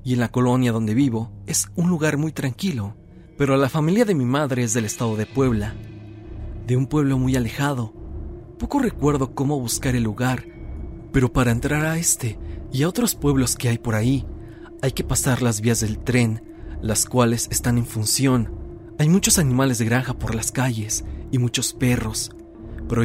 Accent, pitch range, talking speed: Mexican, 110-130 Hz, 180 wpm